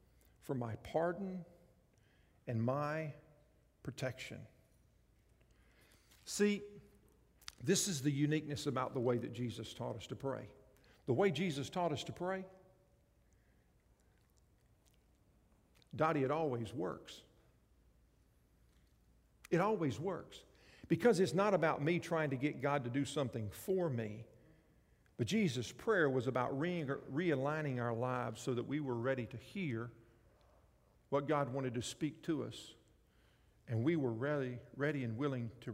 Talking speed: 130 wpm